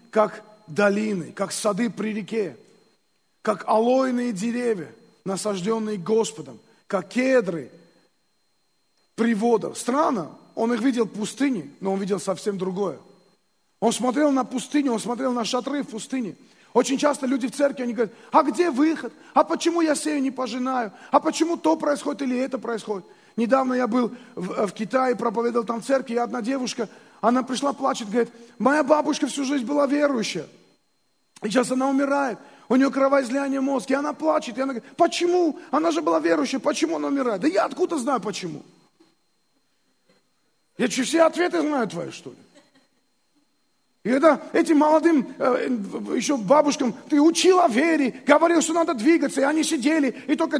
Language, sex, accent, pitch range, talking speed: Russian, male, native, 230-295 Hz, 160 wpm